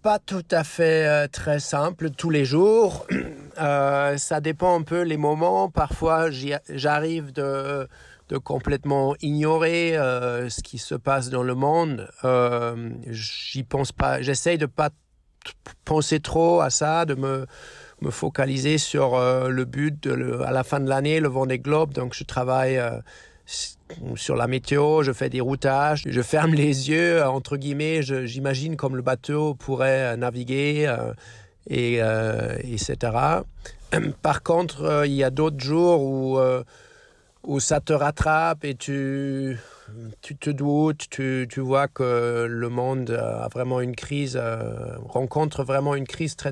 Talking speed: 160 wpm